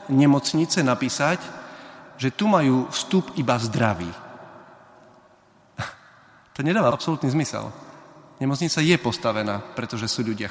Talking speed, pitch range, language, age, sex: 105 wpm, 110-130 Hz, Slovak, 30-49, male